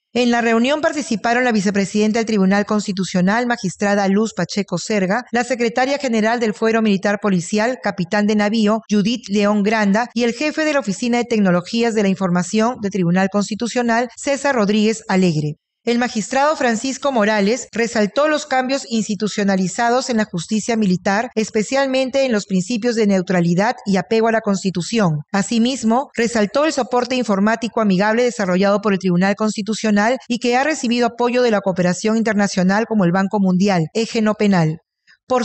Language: Spanish